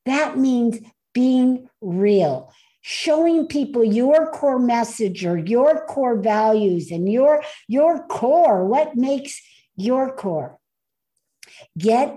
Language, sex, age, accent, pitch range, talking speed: English, female, 60-79, American, 220-290 Hz, 110 wpm